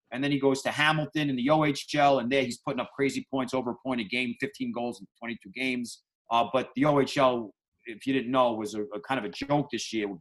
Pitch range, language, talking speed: 120-150 Hz, English, 260 wpm